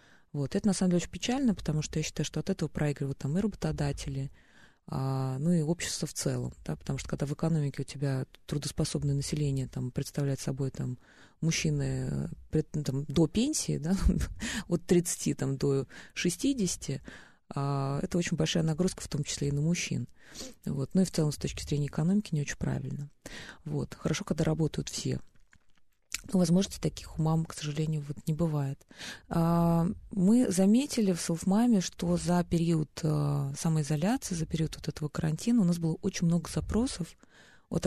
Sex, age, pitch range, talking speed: female, 20-39, 145-180 Hz, 155 wpm